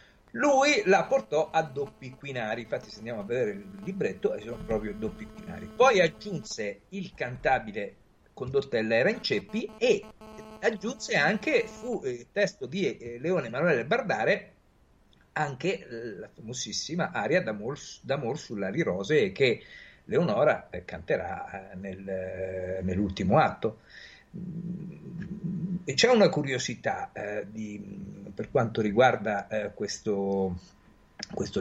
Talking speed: 125 wpm